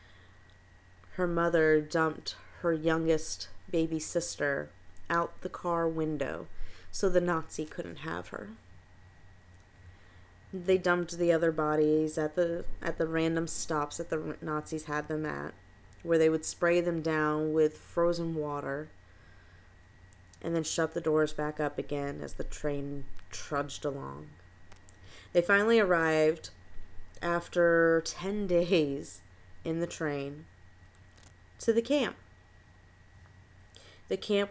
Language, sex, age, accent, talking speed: English, female, 30-49, American, 120 wpm